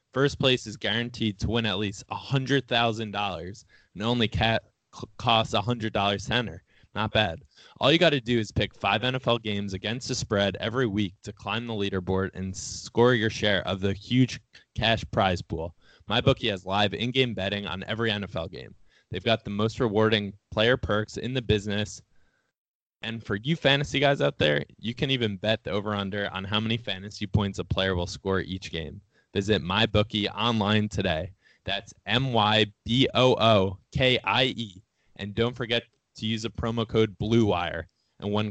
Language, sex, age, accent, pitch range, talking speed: English, male, 20-39, American, 100-115 Hz, 165 wpm